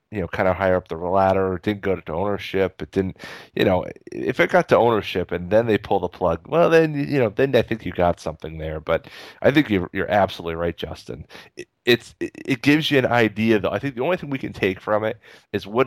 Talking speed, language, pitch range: 255 wpm, English, 95-115 Hz